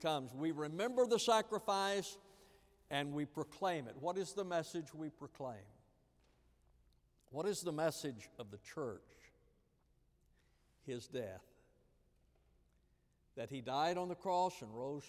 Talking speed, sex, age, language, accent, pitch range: 125 wpm, male, 60-79, English, American, 125-180 Hz